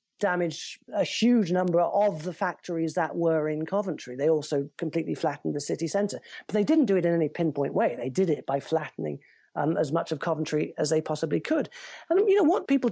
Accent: British